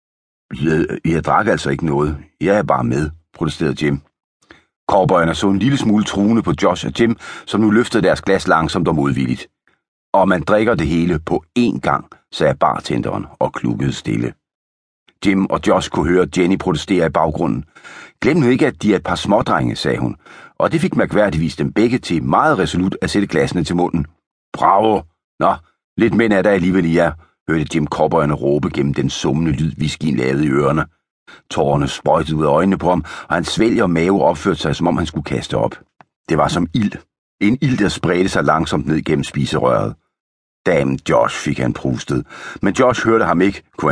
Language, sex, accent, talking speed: Danish, male, native, 200 wpm